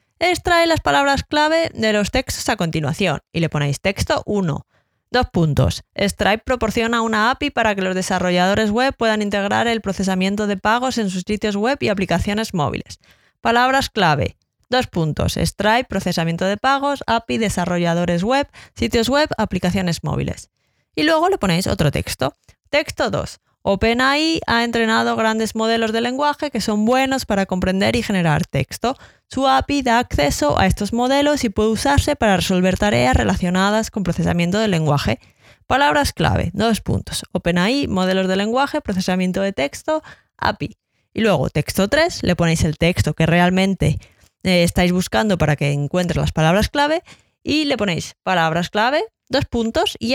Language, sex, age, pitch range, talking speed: Spanish, female, 20-39, 180-250 Hz, 160 wpm